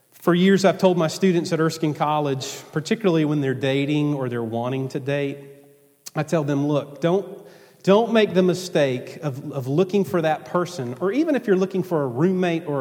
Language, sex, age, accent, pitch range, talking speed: English, male, 40-59, American, 135-180 Hz, 195 wpm